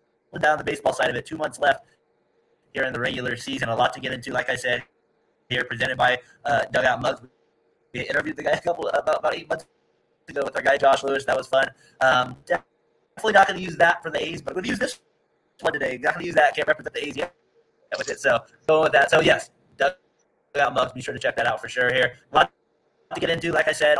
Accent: American